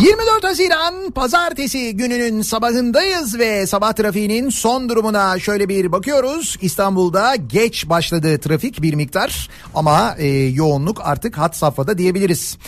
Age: 40-59